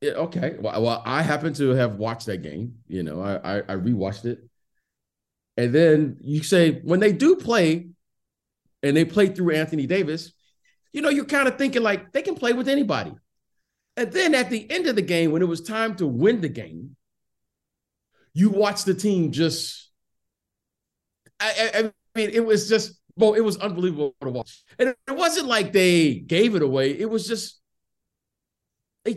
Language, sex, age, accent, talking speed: English, male, 50-69, American, 185 wpm